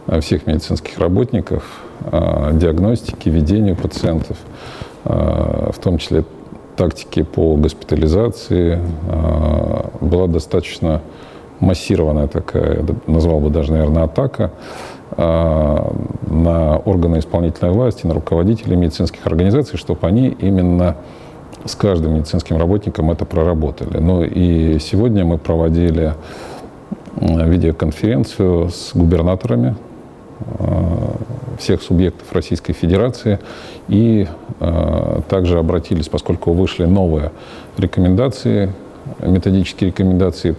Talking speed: 90 wpm